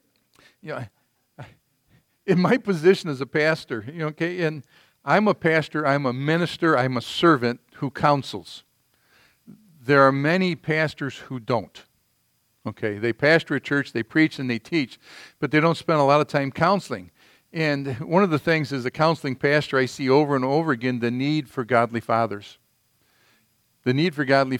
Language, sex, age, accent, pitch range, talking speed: English, male, 50-69, American, 135-165 Hz, 180 wpm